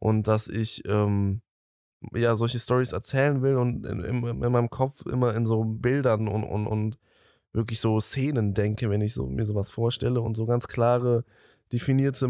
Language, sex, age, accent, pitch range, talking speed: German, male, 20-39, German, 110-130 Hz, 180 wpm